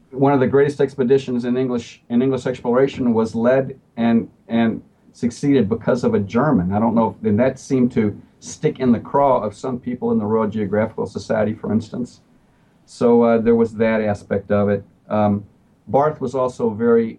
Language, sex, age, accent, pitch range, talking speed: English, male, 50-69, American, 110-140 Hz, 185 wpm